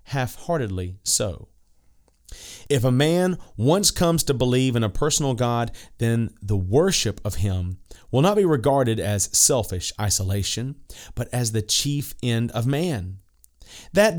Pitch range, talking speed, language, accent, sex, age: 100-135 Hz, 140 wpm, English, American, male, 30-49